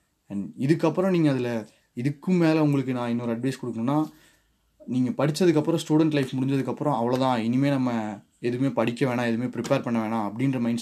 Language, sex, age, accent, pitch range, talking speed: Tamil, male, 20-39, native, 115-145 Hz, 155 wpm